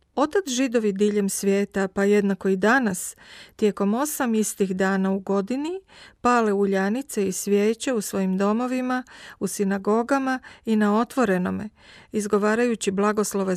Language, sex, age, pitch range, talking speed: Croatian, female, 40-59, 195-240 Hz, 125 wpm